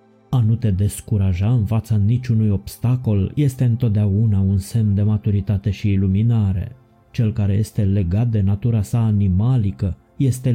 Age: 20-39